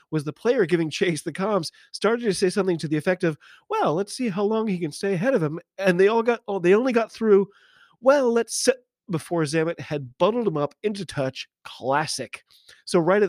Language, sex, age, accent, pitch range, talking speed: English, male, 30-49, American, 150-210 Hz, 225 wpm